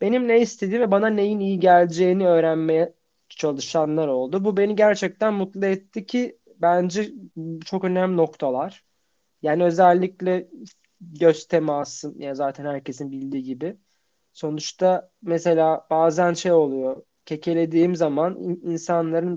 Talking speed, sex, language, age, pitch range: 120 wpm, male, Turkish, 30-49, 150-185 Hz